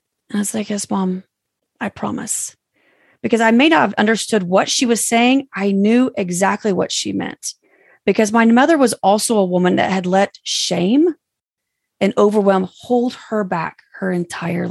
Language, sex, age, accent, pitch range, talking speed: English, female, 30-49, American, 190-240 Hz, 170 wpm